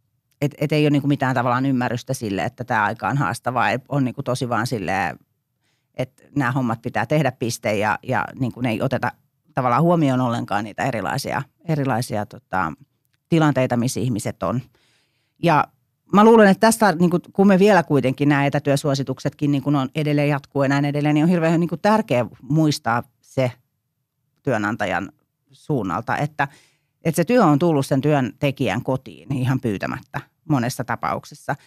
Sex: female